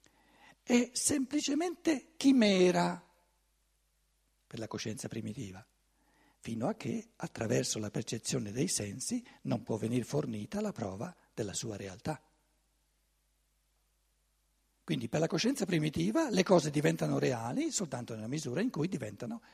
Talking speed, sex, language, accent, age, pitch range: 120 wpm, male, Italian, native, 60-79, 145-230 Hz